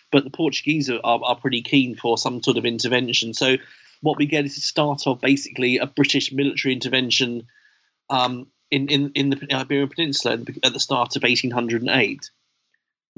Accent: British